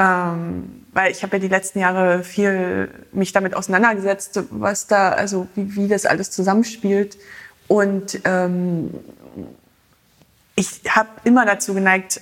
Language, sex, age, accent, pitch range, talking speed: German, female, 20-39, German, 185-205 Hz, 115 wpm